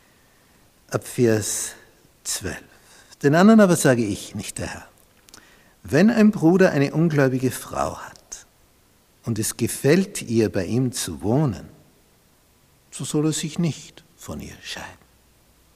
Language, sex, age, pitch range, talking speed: German, male, 60-79, 110-160 Hz, 130 wpm